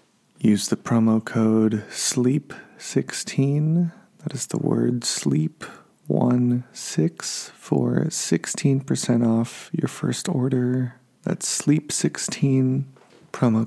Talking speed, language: 85 wpm, English